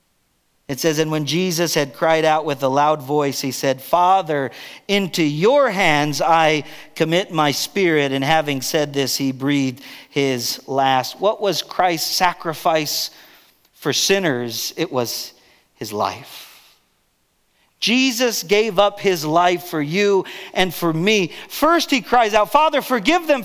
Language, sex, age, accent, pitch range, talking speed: English, male, 40-59, American, 150-230 Hz, 145 wpm